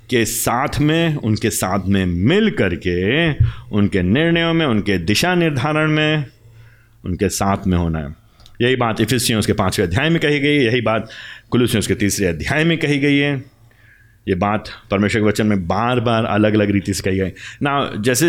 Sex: male